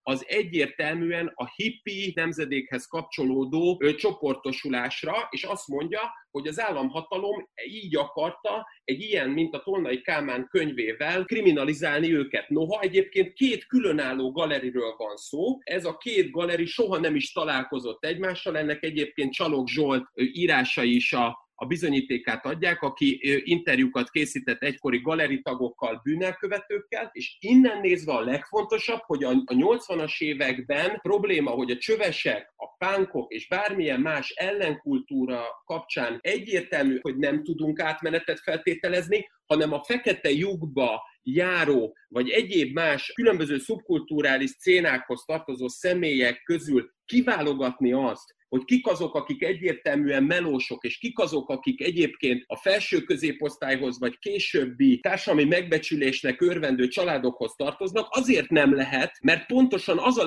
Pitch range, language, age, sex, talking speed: 140-230 Hz, Hungarian, 30-49, male, 125 wpm